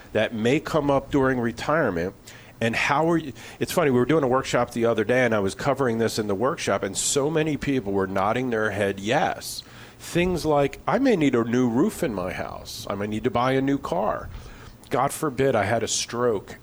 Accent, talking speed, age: American, 225 wpm, 40-59